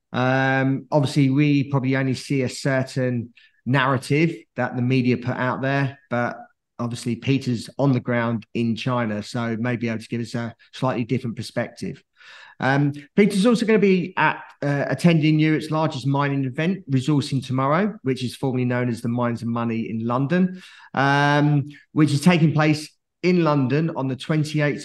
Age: 30-49